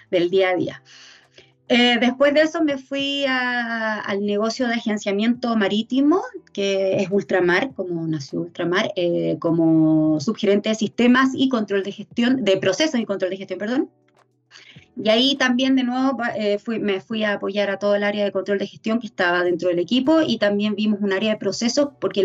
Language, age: Spanish, 20-39